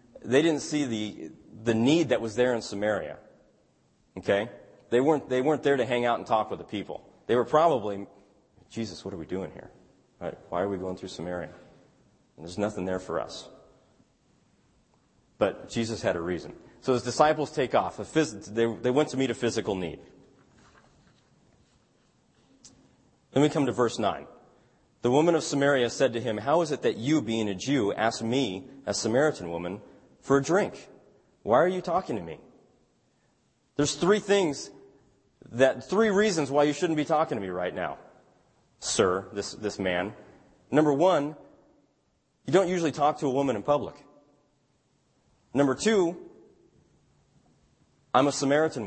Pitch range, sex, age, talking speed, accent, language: 110-150 Hz, male, 40-59, 160 wpm, American, English